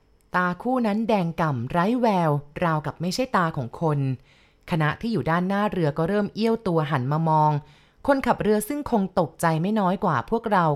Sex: female